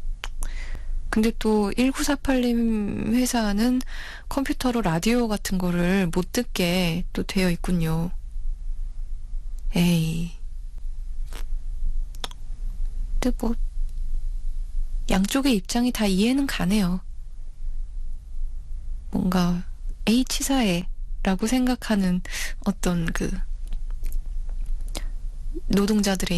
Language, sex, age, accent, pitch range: Korean, female, 20-39, native, 175-230 Hz